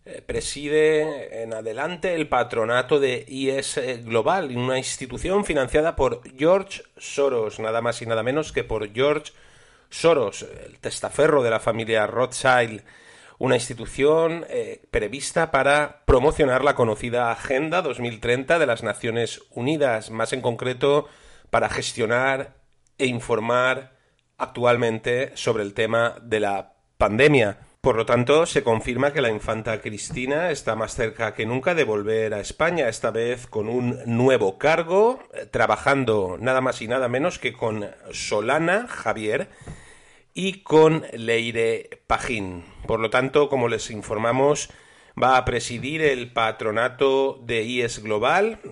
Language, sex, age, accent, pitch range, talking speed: Spanish, male, 40-59, Spanish, 115-155 Hz, 135 wpm